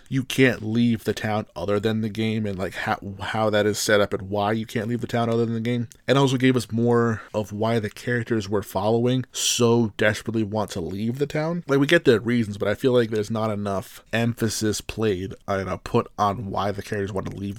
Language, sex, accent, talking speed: English, male, American, 235 wpm